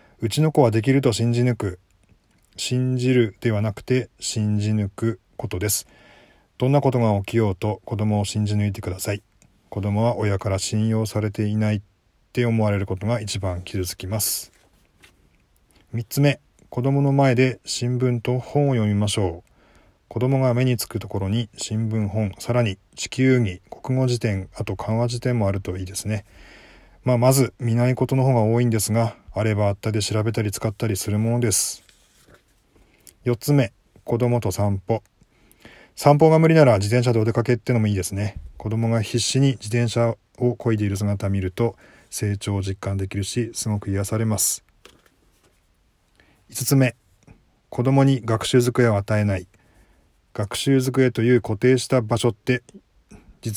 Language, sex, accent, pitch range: Japanese, male, native, 100-120 Hz